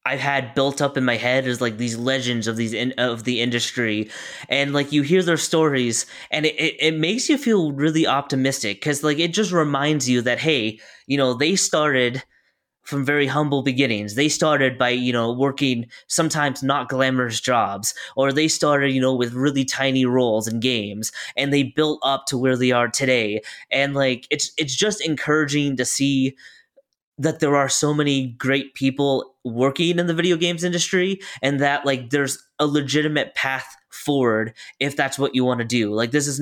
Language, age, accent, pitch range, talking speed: English, 20-39, American, 125-150 Hz, 195 wpm